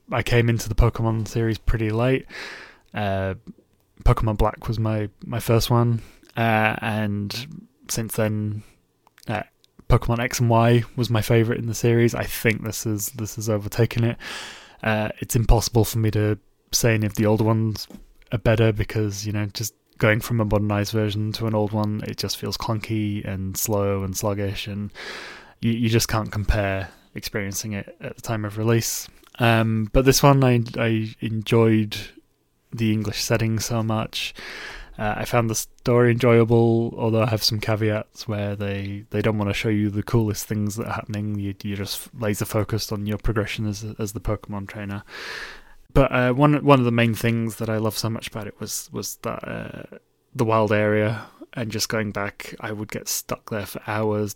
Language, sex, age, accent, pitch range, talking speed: English, male, 20-39, British, 105-115 Hz, 190 wpm